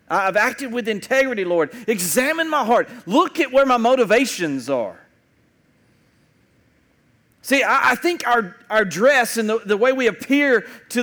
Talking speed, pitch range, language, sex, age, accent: 150 wpm, 200-260 Hz, English, male, 40-59, American